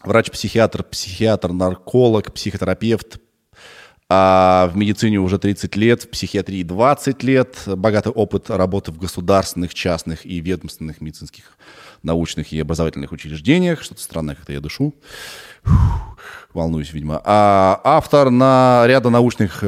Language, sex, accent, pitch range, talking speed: Russian, male, native, 90-125 Hz, 120 wpm